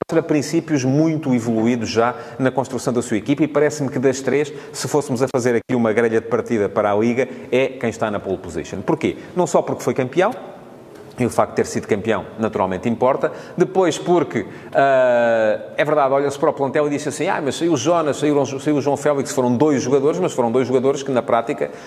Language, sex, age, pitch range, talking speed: Portuguese, male, 40-59, 115-145 Hz, 215 wpm